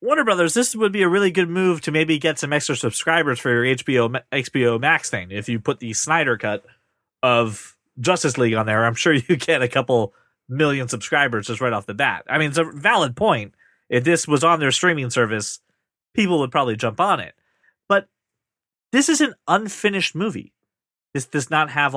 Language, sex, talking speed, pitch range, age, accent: English, male, 200 wpm, 130-195 Hz, 30-49, American